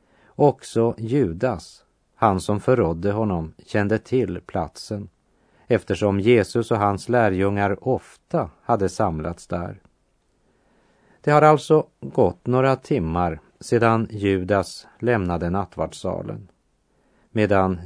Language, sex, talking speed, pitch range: Swedish, male, 95 wpm, 95-120 Hz